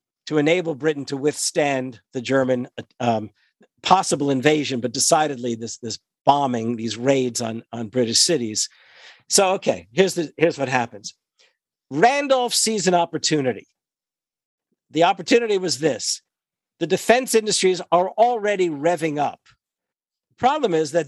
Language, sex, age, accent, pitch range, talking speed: English, male, 50-69, American, 135-185 Hz, 130 wpm